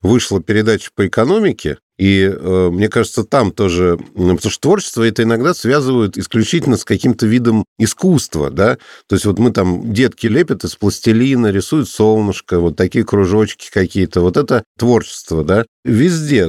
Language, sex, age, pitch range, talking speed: Russian, male, 50-69, 100-120 Hz, 150 wpm